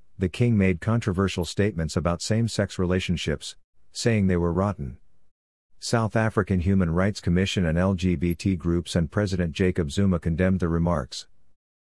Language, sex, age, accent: English, male, 50-69, American